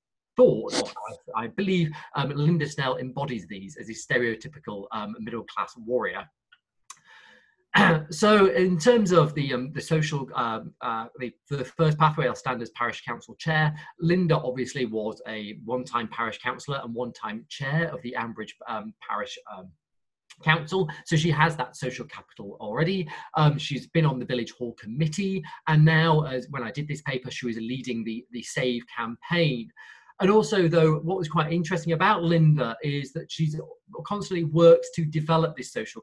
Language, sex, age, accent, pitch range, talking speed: English, male, 30-49, British, 125-170 Hz, 165 wpm